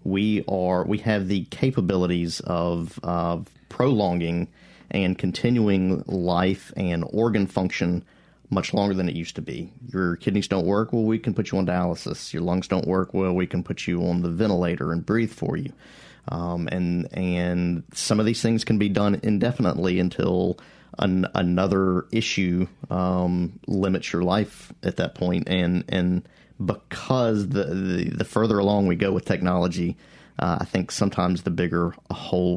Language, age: English, 40-59